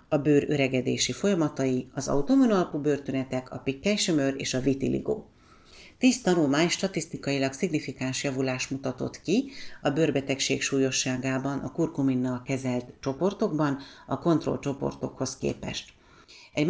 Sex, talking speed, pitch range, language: female, 110 wpm, 130-155 Hz, Hungarian